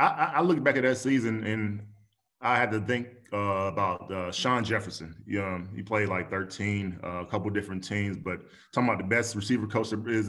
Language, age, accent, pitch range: English, 20-39, American, 105-150 Hz